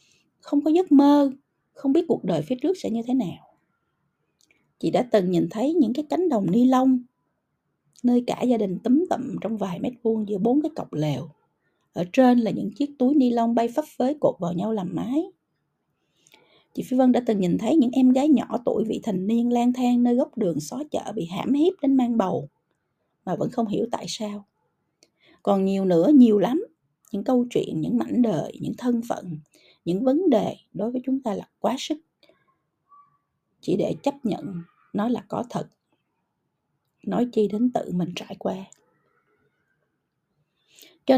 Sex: female